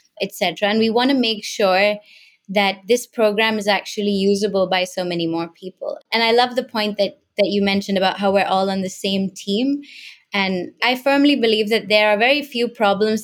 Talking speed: 210 wpm